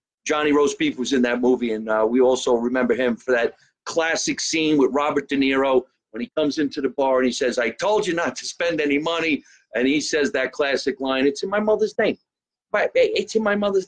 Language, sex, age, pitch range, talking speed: English, male, 50-69, 130-175 Hz, 230 wpm